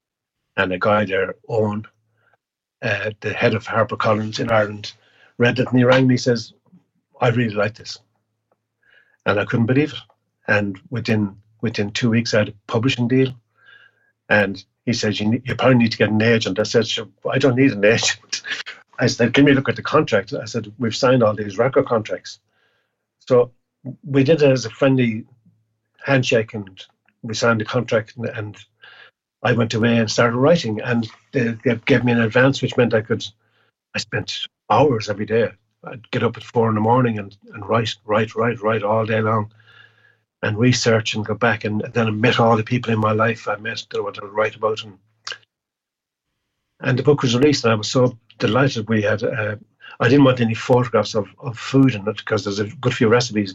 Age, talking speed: 50-69, 205 wpm